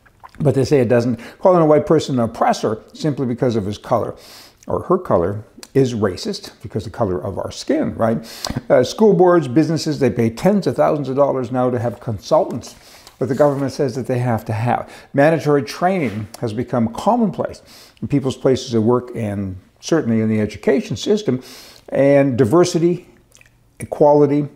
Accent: American